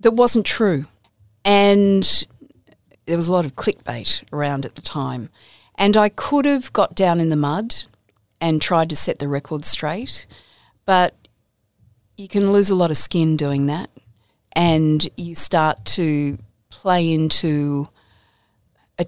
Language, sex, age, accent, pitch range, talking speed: English, female, 50-69, Australian, 135-175 Hz, 150 wpm